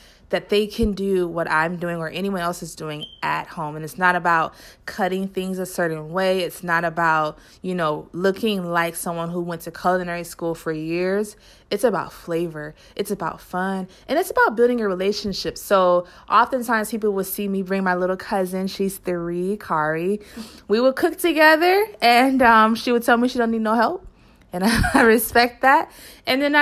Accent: American